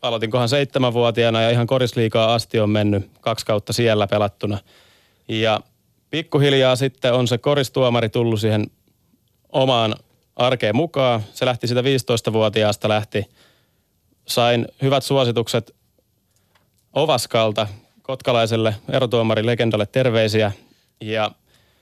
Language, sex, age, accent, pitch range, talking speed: Finnish, male, 30-49, native, 110-130 Hz, 100 wpm